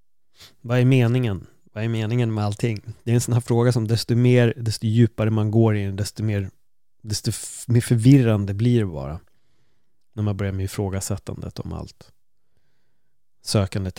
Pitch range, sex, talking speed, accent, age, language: 105-125 Hz, male, 165 wpm, native, 30-49, Swedish